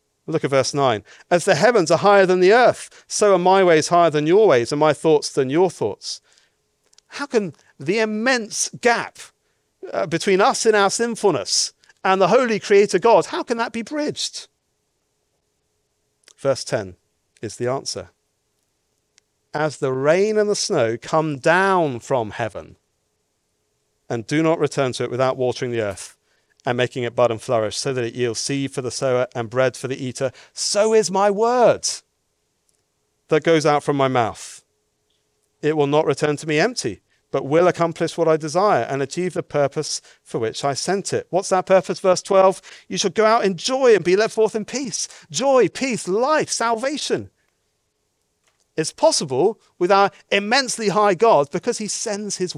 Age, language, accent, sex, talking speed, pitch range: 40-59, English, British, male, 175 wpm, 135-210 Hz